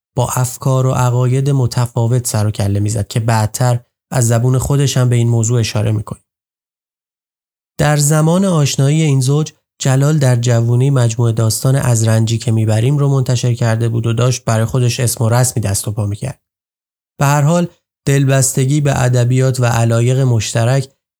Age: 30-49